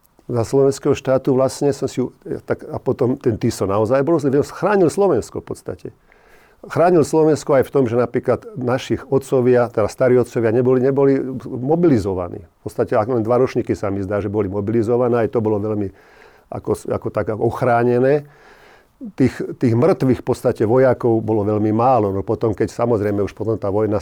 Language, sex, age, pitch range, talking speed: Slovak, male, 50-69, 105-130 Hz, 170 wpm